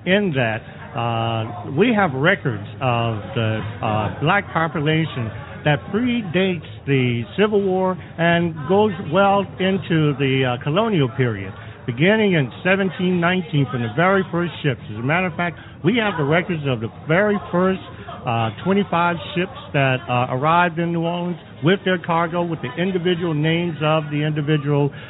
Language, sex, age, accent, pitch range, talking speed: English, male, 60-79, American, 135-185 Hz, 155 wpm